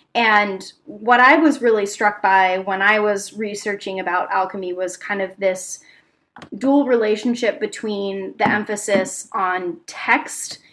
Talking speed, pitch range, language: 135 wpm, 190-225 Hz, English